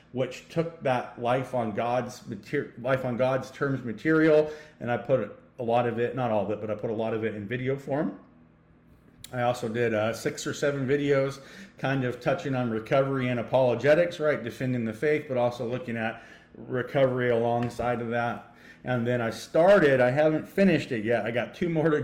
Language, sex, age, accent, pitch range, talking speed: English, male, 40-59, American, 110-140 Hz, 200 wpm